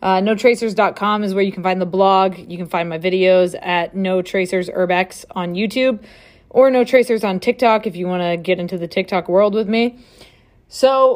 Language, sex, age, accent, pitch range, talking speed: English, female, 20-39, American, 190-230 Hz, 185 wpm